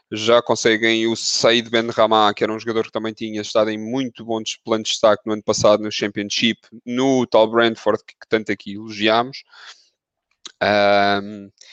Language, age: Portuguese, 20-39